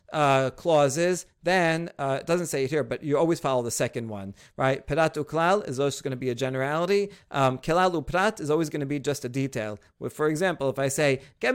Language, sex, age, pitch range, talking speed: English, male, 40-59, 135-170 Hz, 210 wpm